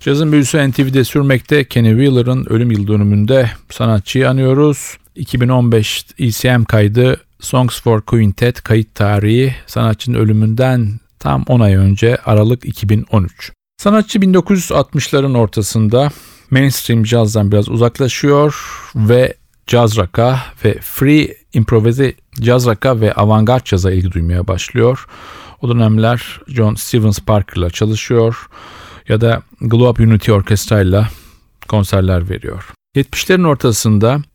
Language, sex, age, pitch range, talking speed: Turkish, male, 40-59, 105-130 Hz, 110 wpm